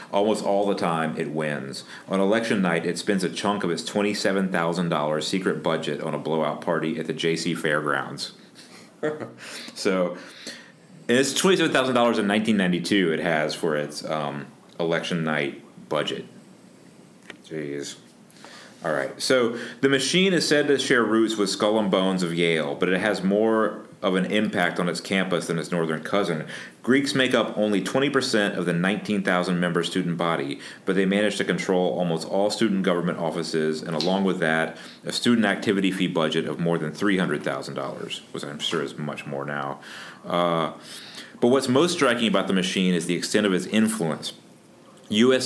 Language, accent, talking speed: English, American, 165 wpm